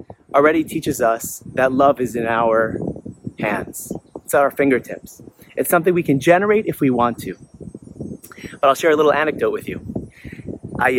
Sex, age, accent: male, 30-49, American